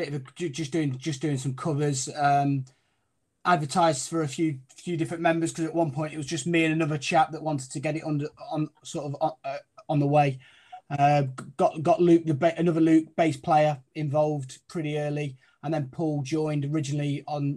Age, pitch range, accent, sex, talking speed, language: 20-39, 135-160 Hz, British, male, 210 wpm, English